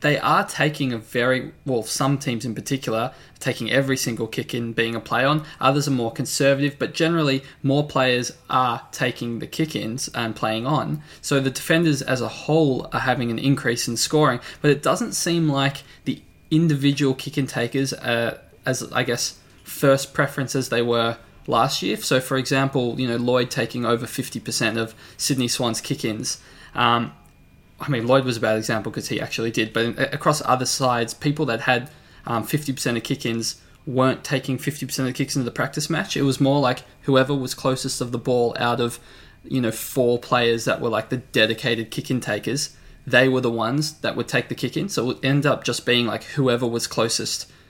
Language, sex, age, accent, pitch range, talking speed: English, male, 20-39, Australian, 115-140 Hz, 200 wpm